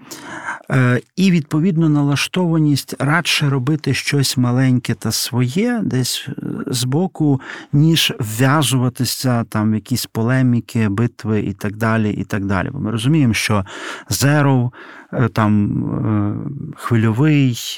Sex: male